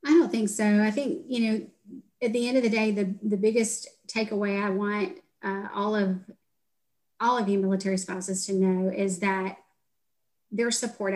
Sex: female